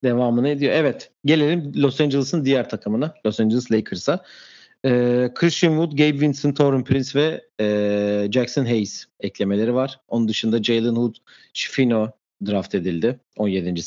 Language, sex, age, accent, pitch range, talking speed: Turkish, male, 40-59, native, 105-140 Hz, 140 wpm